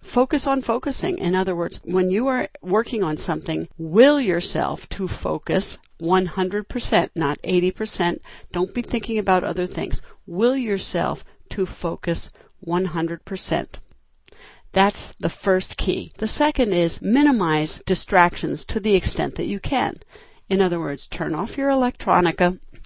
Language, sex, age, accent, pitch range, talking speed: English, female, 50-69, American, 175-225 Hz, 135 wpm